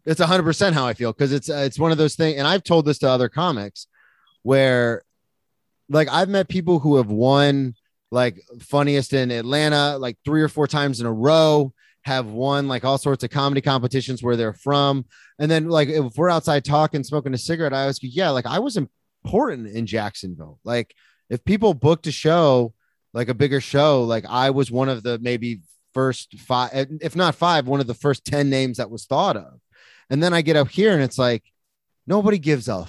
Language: English